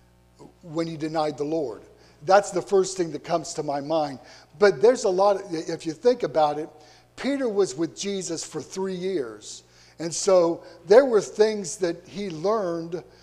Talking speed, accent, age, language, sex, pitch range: 175 wpm, American, 50-69, English, male, 140-180 Hz